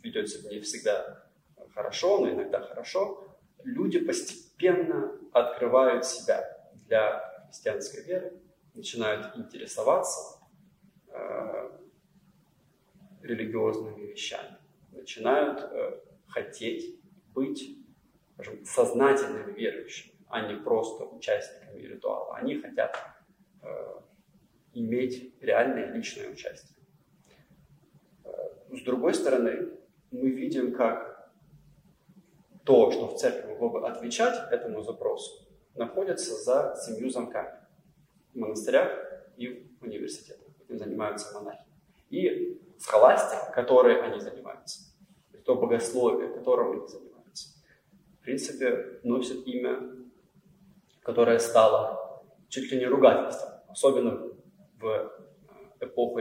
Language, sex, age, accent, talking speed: Russian, male, 30-49, native, 95 wpm